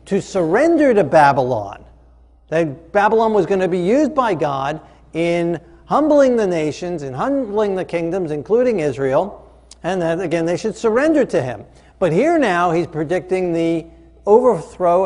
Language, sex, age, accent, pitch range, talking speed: English, male, 50-69, American, 130-190 Hz, 150 wpm